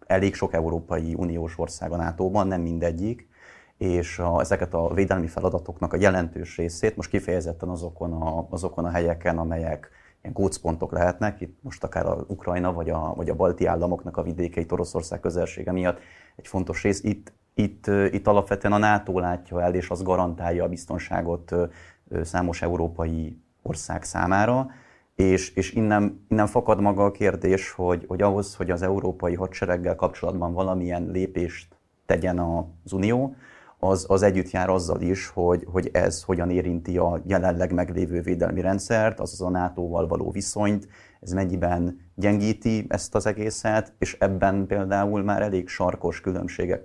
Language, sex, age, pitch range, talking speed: Hungarian, male, 30-49, 85-100 Hz, 155 wpm